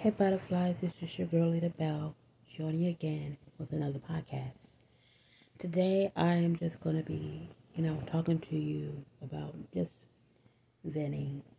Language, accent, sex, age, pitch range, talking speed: English, American, female, 30-49, 130-165 Hz, 150 wpm